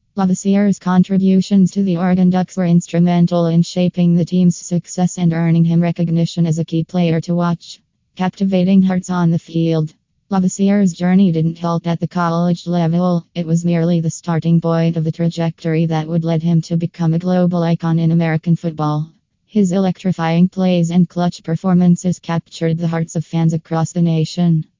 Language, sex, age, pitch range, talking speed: English, female, 20-39, 165-180 Hz, 170 wpm